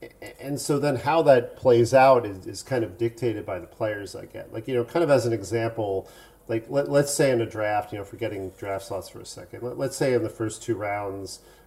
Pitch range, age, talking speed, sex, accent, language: 105-120 Hz, 40-59, 245 wpm, male, American, English